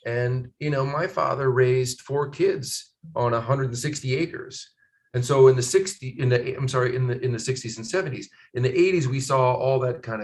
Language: English